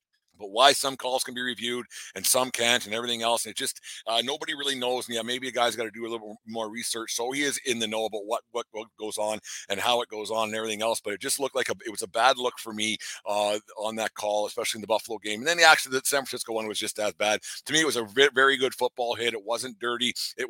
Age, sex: 50-69, male